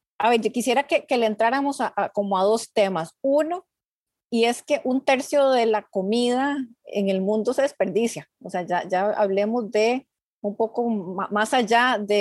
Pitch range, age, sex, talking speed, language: 210-255 Hz, 30-49, female, 190 wpm, Spanish